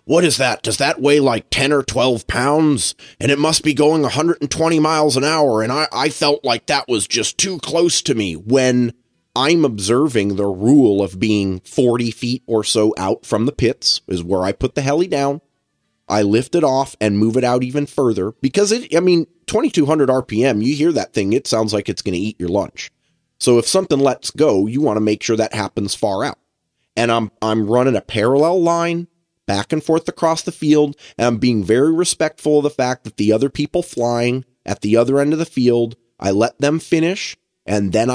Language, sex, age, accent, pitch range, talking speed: English, male, 30-49, American, 110-145 Hz, 210 wpm